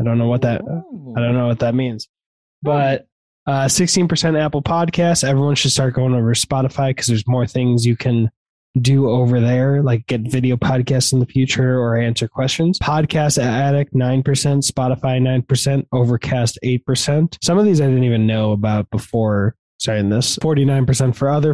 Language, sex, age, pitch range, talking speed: English, male, 20-39, 125-155 Hz, 175 wpm